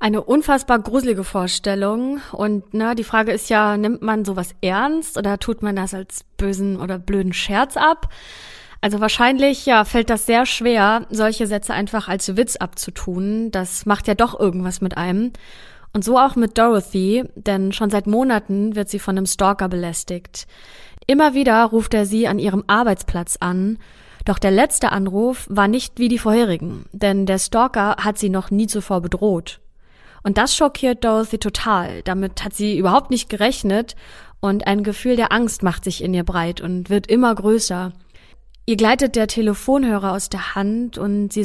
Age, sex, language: 20-39, female, German